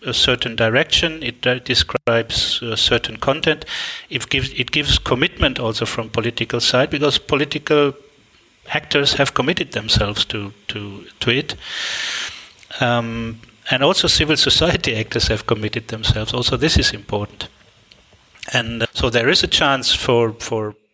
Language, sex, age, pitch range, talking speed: English, male, 30-49, 115-140 Hz, 140 wpm